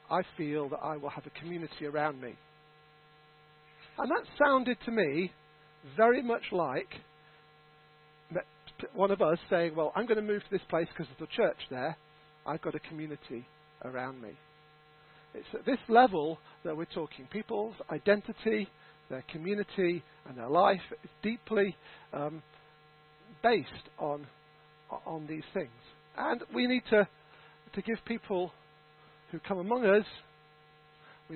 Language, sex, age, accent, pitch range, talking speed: English, male, 50-69, British, 150-190 Hz, 145 wpm